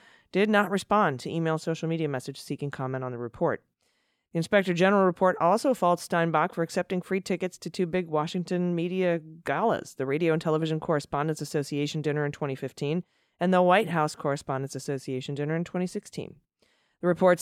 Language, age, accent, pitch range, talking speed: English, 30-49, American, 145-180 Hz, 170 wpm